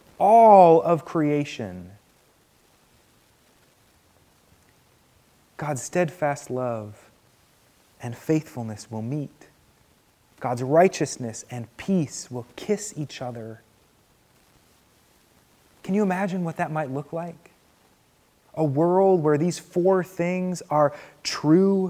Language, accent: English, American